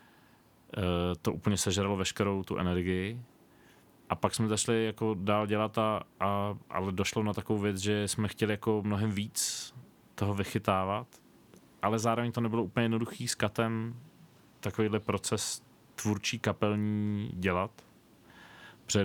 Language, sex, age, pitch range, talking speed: Czech, male, 30-49, 90-110 Hz, 130 wpm